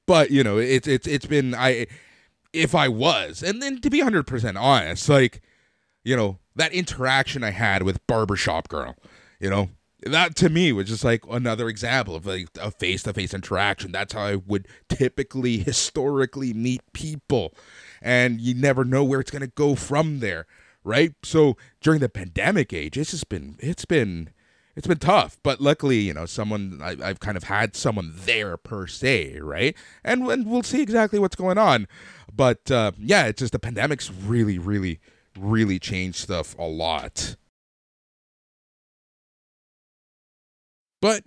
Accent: American